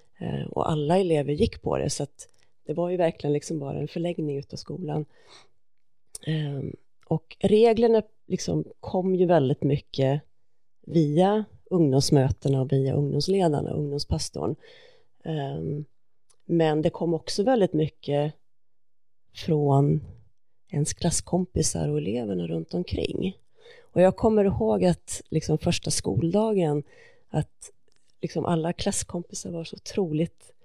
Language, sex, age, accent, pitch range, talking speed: English, female, 30-49, Swedish, 145-180 Hz, 110 wpm